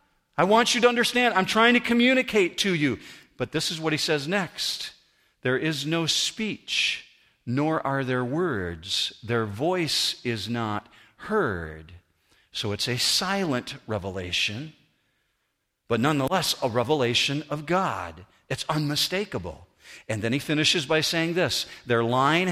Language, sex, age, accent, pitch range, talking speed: English, male, 50-69, American, 125-180 Hz, 140 wpm